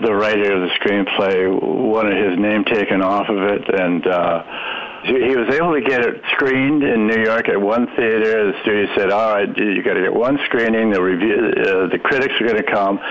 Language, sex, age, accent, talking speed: English, male, 60-79, American, 215 wpm